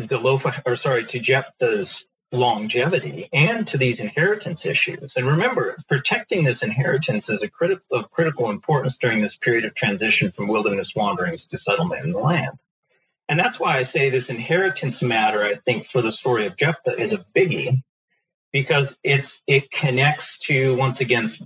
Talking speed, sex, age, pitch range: 170 wpm, male, 40-59, 125-165 Hz